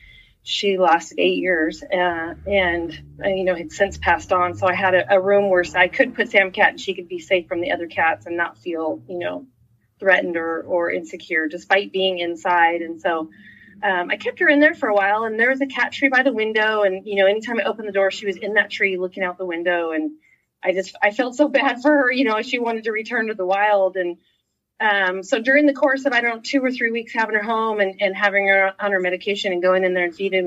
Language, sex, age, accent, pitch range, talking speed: English, female, 30-49, American, 180-225 Hz, 255 wpm